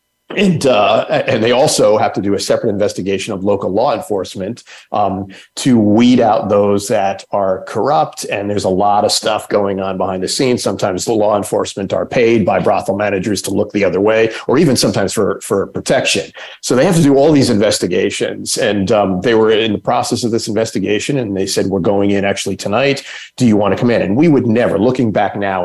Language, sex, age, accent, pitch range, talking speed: English, male, 50-69, American, 100-115 Hz, 220 wpm